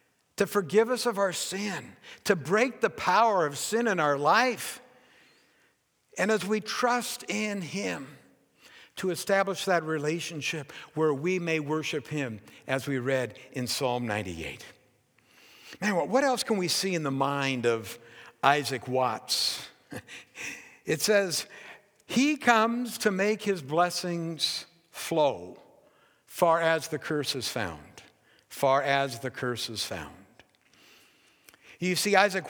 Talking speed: 135 wpm